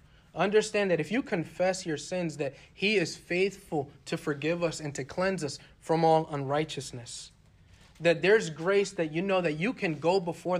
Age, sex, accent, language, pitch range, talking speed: 40-59, male, American, English, 140-170 Hz, 180 wpm